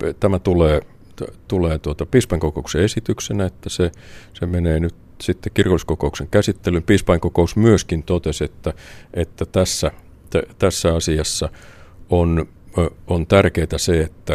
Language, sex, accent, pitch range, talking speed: Finnish, male, native, 80-100 Hz, 115 wpm